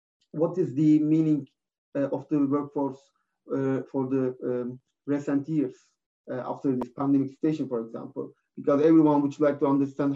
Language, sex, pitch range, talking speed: English, male, 135-165 Hz, 160 wpm